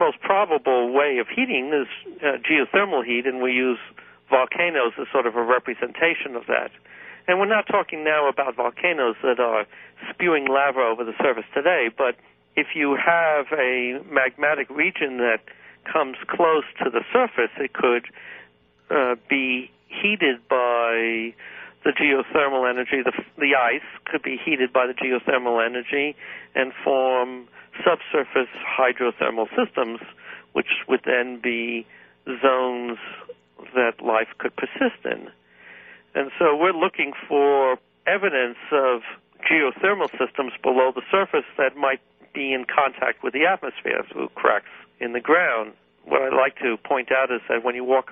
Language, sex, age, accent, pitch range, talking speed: English, male, 60-79, American, 120-140 Hz, 145 wpm